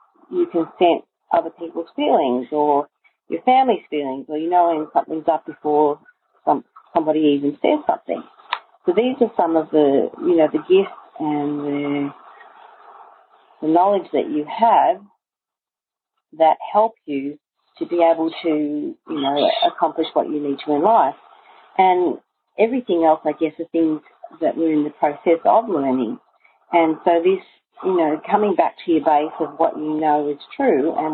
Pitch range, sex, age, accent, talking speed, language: 150-255 Hz, female, 40-59, Australian, 165 wpm, English